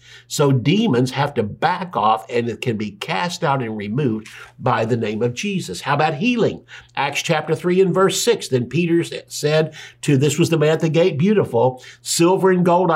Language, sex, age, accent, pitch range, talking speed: English, male, 60-79, American, 130-175 Hz, 200 wpm